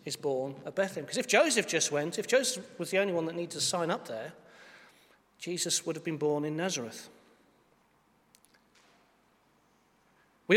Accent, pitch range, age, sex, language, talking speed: British, 155-195 Hz, 40-59, male, English, 165 wpm